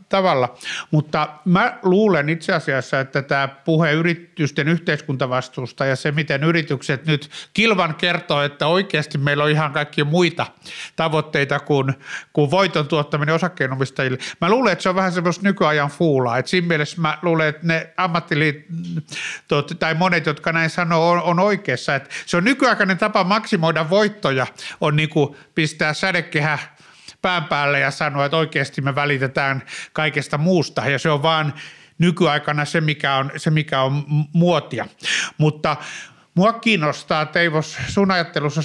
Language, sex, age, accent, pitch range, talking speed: Finnish, male, 60-79, native, 145-180 Hz, 145 wpm